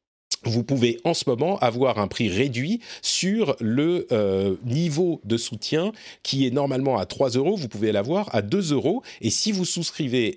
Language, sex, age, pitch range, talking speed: French, male, 40-59, 110-155 Hz, 180 wpm